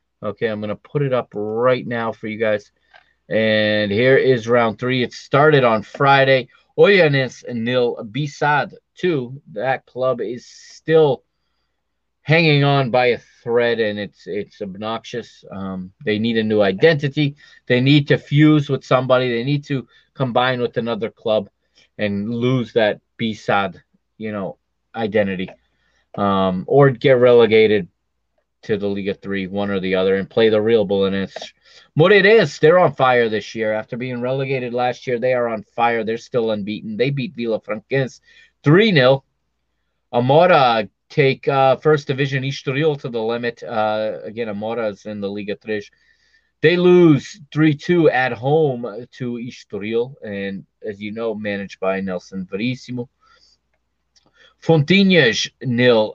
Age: 30-49